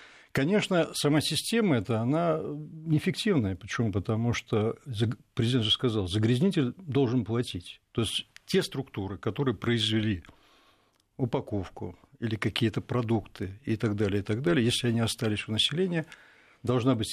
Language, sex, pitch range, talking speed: Russian, male, 110-140 Hz, 135 wpm